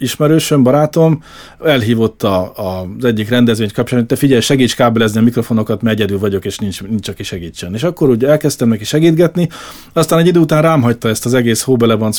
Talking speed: 180 wpm